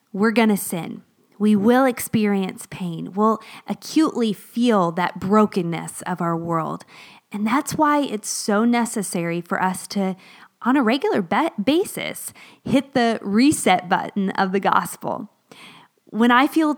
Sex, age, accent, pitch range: female, 20-39, American, 185-225 Hz